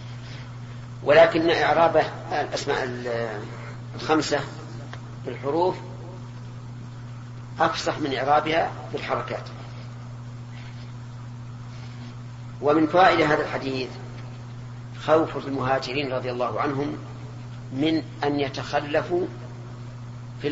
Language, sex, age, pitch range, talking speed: Arabic, female, 40-59, 120-145 Hz, 65 wpm